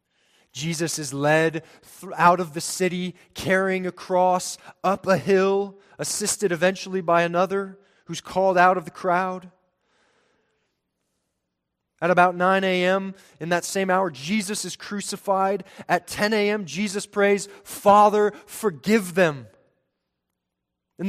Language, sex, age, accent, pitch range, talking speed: English, male, 20-39, American, 170-205 Hz, 120 wpm